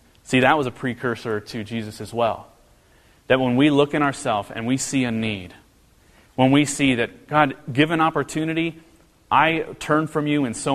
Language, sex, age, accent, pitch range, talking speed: English, male, 30-49, American, 115-145 Hz, 185 wpm